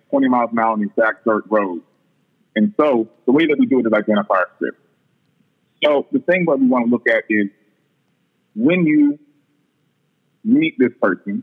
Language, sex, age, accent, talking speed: English, male, 40-59, American, 190 wpm